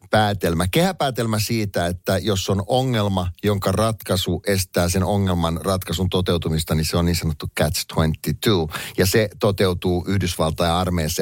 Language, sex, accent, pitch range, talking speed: Finnish, male, native, 85-105 Hz, 140 wpm